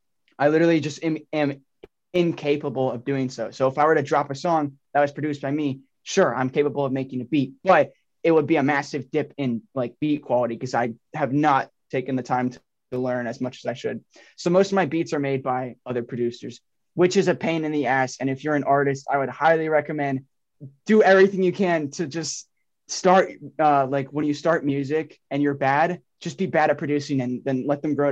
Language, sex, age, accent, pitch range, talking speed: English, male, 20-39, American, 125-155 Hz, 225 wpm